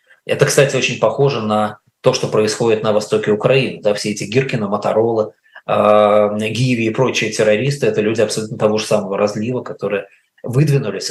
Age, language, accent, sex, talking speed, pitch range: 20-39, Russian, native, male, 165 wpm, 105-130 Hz